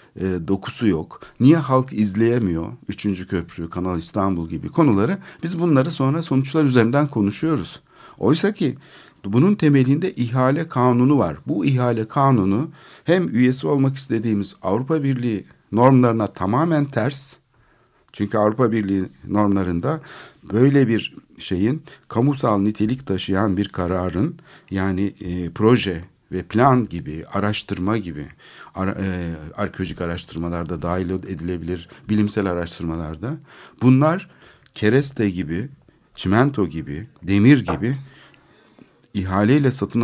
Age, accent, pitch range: 60-79, native, 95-130 Hz